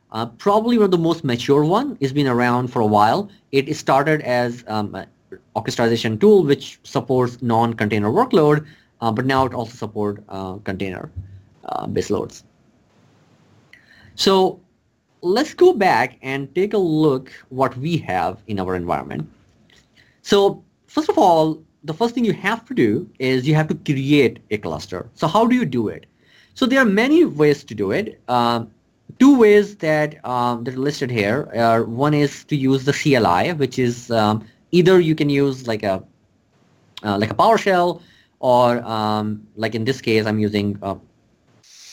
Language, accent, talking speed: English, Indian, 170 wpm